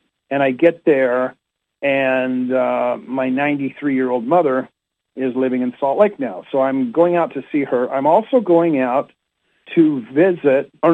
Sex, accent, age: male, American, 50-69